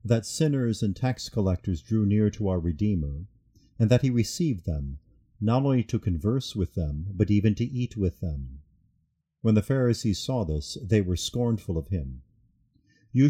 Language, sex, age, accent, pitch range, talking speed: English, male, 50-69, American, 90-120 Hz, 170 wpm